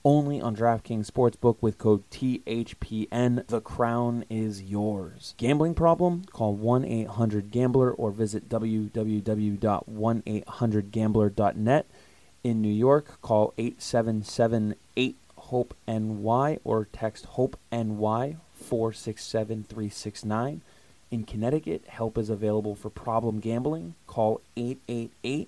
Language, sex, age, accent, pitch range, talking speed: English, male, 20-39, American, 105-125 Hz, 85 wpm